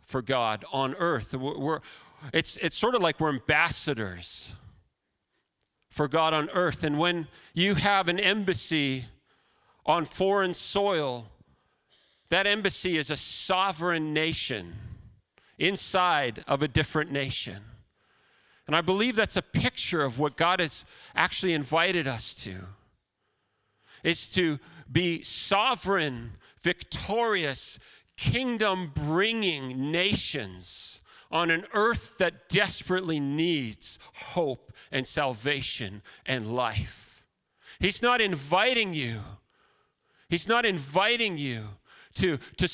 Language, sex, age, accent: English, male, 40-59, American